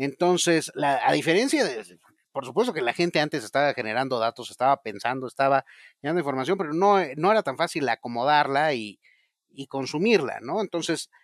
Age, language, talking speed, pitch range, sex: 30-49, Spanish, 160 wpm, 120-165 Hz, male